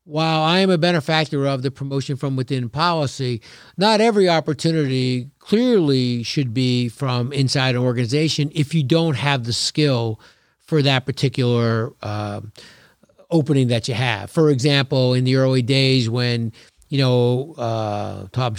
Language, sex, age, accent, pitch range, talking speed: English, male, 50-69, American, 120-145 Hz, 150 wpm